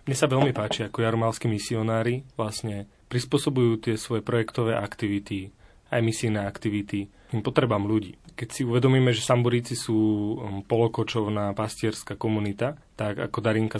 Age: 30-49